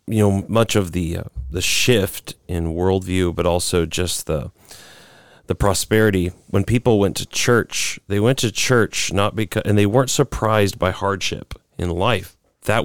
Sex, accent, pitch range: male, American, 90-120 Hz